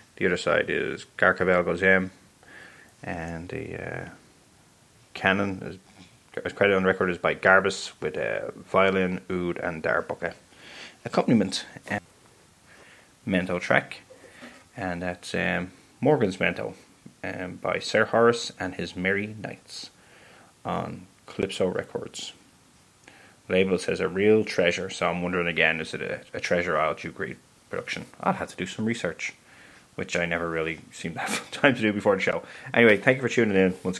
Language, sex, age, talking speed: English, male, 20-39, 155 wpm